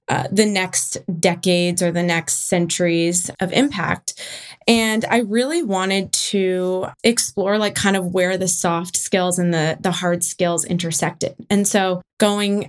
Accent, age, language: American, 20-39, English